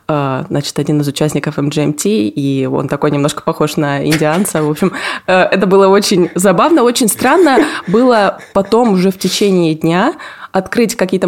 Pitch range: 170-210 Hz